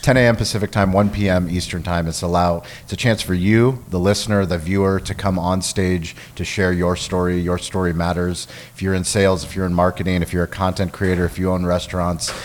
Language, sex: English, male